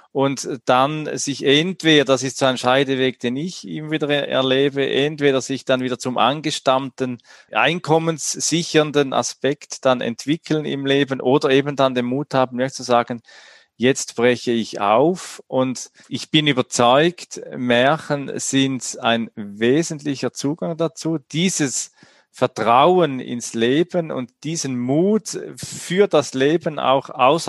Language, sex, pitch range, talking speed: German, male, 120-150 Hz, 135 wpm